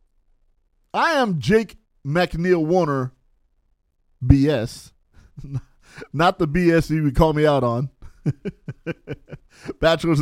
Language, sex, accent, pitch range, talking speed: English, male, American, 105-170 Hz, 95 wpm